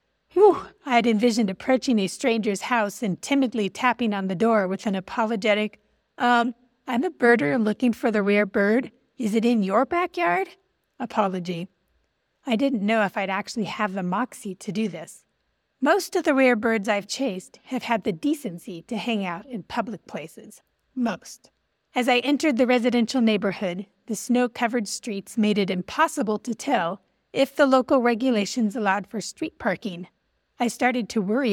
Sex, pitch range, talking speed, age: female, 200-250 Hz, 165 wpm, 40-59